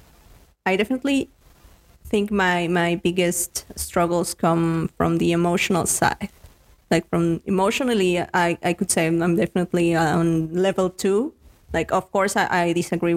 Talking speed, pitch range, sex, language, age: 140 wpm, 170-205 Hz, female, English, 20-39